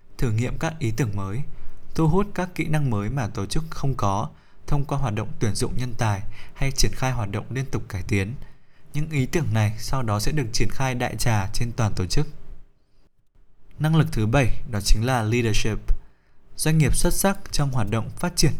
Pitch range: 110-145 Hz